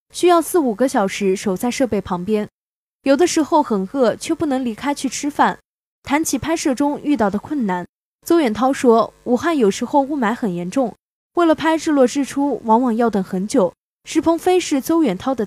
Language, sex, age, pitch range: Chinese, female, 10-29, 210-295 Hz